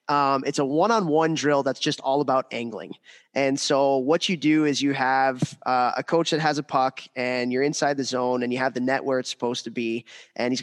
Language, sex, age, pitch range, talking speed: English, male, 20-39, 125-150 Hz, 235 wpm